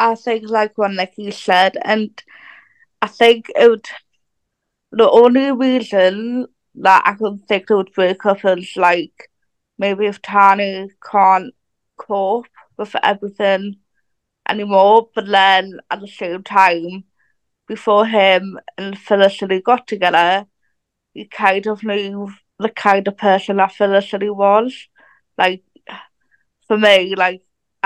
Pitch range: 190-215 Hz